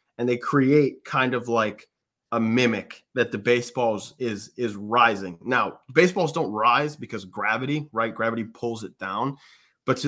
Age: 20-39